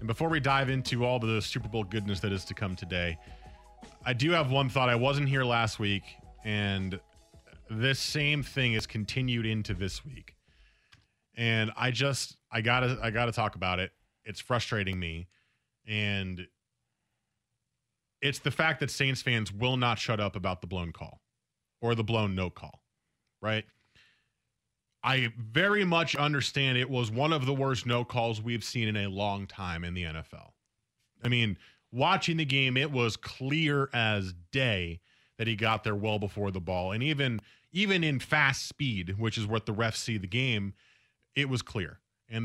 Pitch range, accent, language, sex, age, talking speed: 105-130 Hz, American, English, male, 30-49, 180 wpm